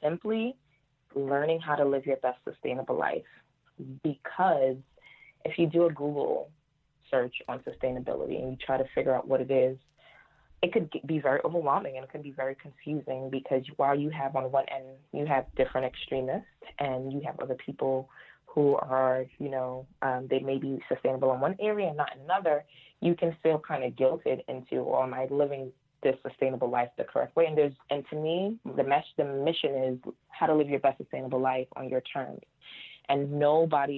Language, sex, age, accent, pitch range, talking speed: English, female, 20-39, American, 130-155 Hz, 190 wpm